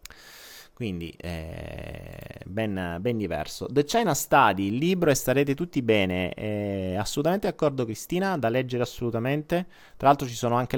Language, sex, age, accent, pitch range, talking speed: Italian, male, 30-49, native, 100-140 Hz, 145 wpm